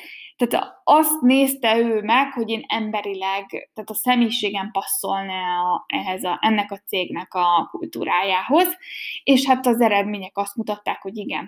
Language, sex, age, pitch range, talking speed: Hungarian, female, 20-39, 205-265 Hz, 130 wpm